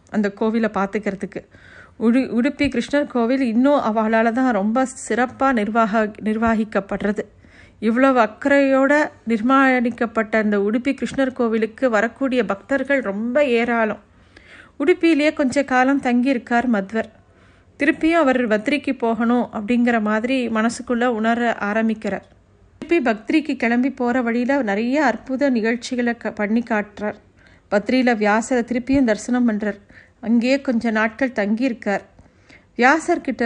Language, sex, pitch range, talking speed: Tamil, female, 215-260 Hz, 100 wpm